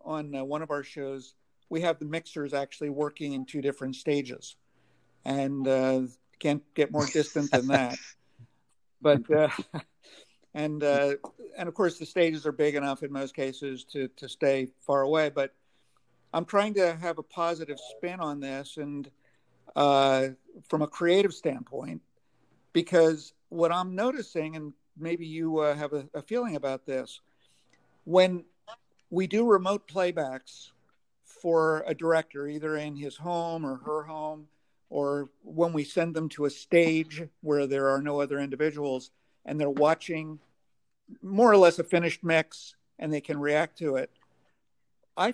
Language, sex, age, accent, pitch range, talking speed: English, male, 50-69, American, 140-165 Hz, 160 wpm